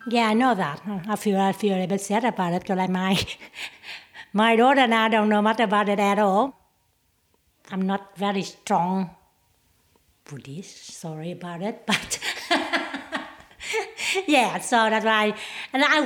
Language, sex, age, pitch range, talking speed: English, female, 60-79, 170-210 Hz, 155 wpm